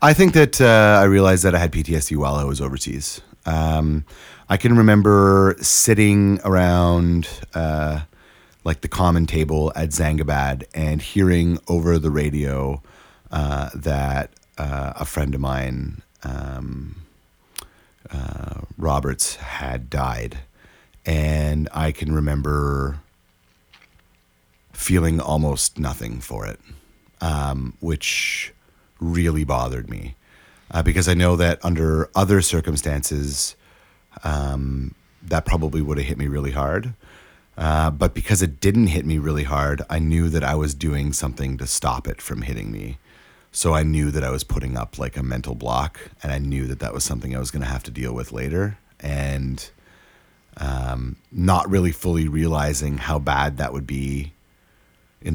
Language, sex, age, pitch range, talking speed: English, male, 30-49, 70-85 Hz, 150 wpm